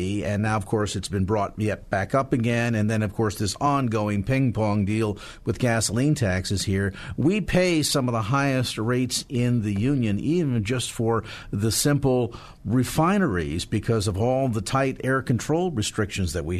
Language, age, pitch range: English, 50-69, 105-145 Hz